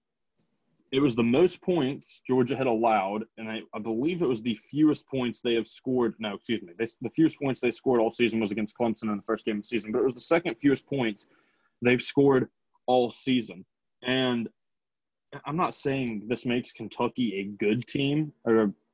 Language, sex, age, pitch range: English, male, 20-39, 115-130 Hz